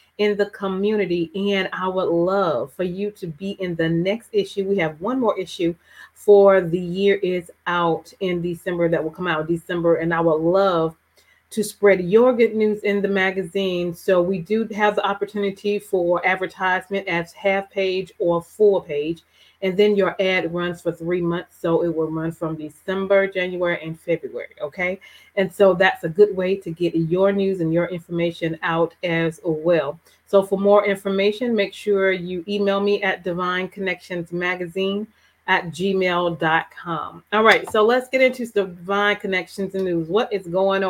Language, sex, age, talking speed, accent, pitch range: English, female, 30-49, 175 wpm, American, 170-200 Hz